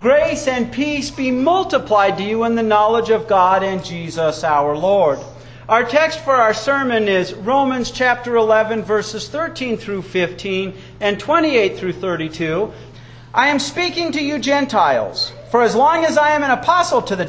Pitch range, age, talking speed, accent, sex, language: 185-290 Hz, 40-59, 170 wpm, American, male, English